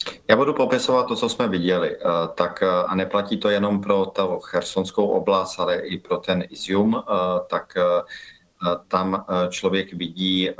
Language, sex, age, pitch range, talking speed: Slovak, male, 40-59, 85-95 Hz, 140 wpm